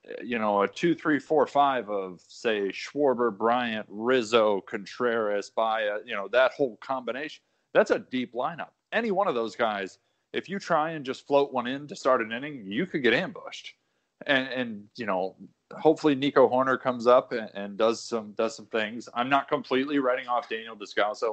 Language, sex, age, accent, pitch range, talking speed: English, male, 20-39, American, 105-130 Hz, 185 wpm